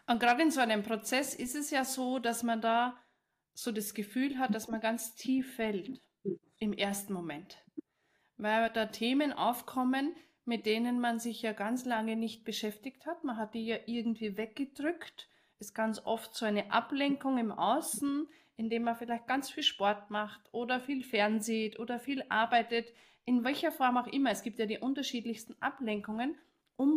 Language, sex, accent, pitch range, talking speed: German, female, German, 225-265 Hz, 175 wpm